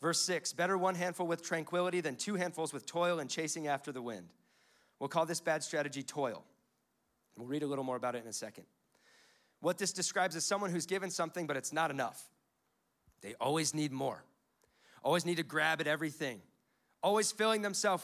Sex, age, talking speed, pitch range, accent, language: male, 40-59, 195 wpm, 150-190 Hz, American, English